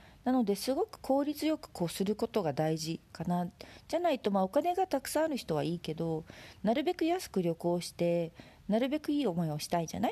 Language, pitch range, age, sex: Japanese, 175-240 Hz, 40-59, female